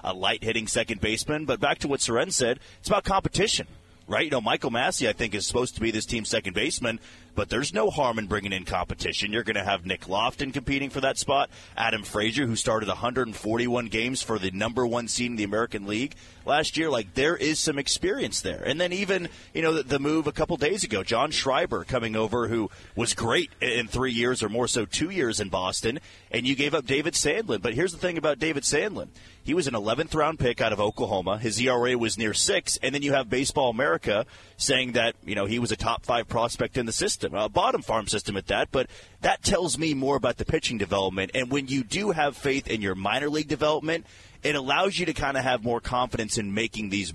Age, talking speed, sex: 30-49, 230 wpm, male